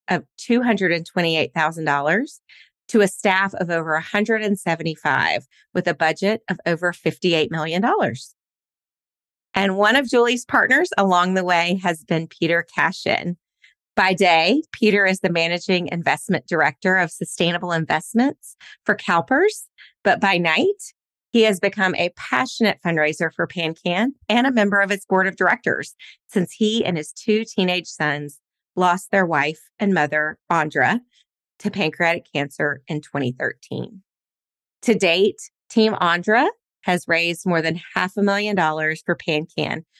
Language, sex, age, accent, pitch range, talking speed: English, female, 30-49, American, 165-210 Hz, 135 wpm